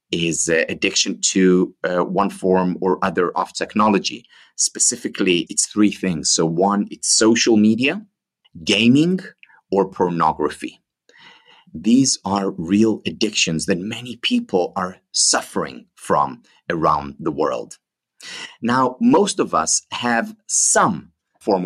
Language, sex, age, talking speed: English, male, 30-49, 120 wpm